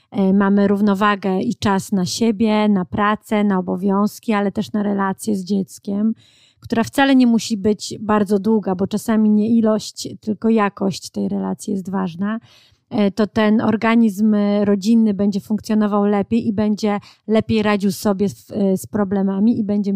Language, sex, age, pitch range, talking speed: Polish, female, 30-49, 200-220 Hz, 145 wpm